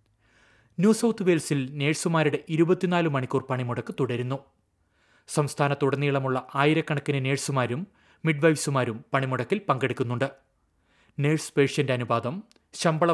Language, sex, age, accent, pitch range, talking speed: Malayalam, male, 30-49, native, 125-145 Hz, 80 wpm